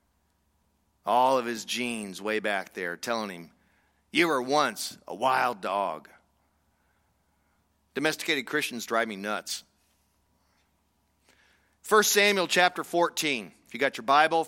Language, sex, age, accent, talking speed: English, male, 40-59, American, 120 wpm